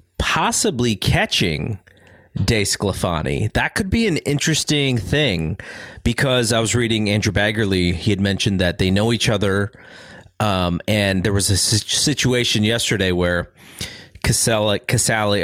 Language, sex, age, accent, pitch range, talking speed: English, male, 30-49, American, 95-120 Hz, 130 wpm